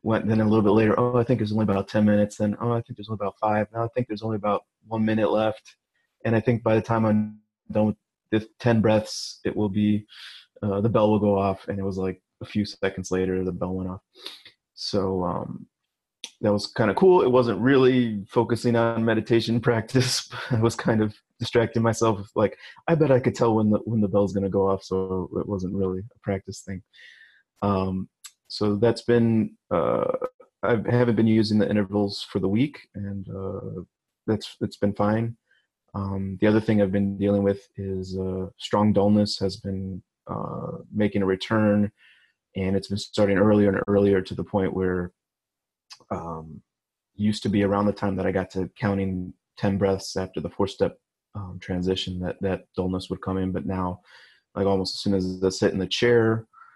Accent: American